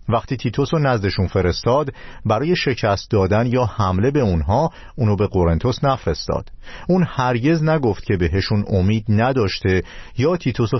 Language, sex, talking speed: Persian, male, 140 wpm